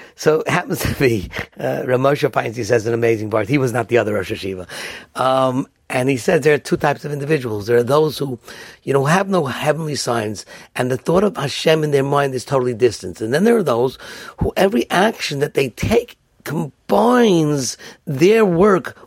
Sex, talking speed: male, 205 wpm